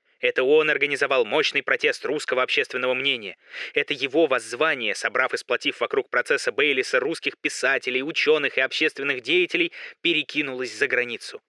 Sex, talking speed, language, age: male, 135 wpm, Russian, 20-39